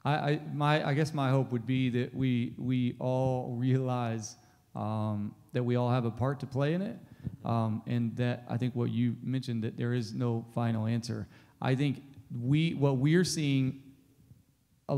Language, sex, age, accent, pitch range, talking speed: English, male, 30-49, American, 125-145 Hz, 180 wpm